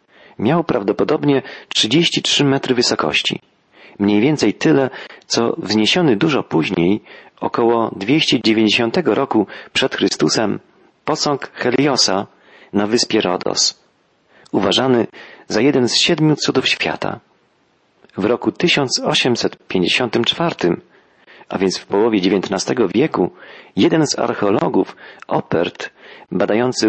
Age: 40-59